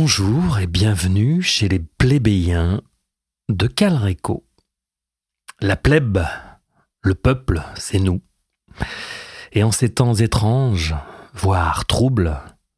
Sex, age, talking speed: male, 40-59, 100 wpm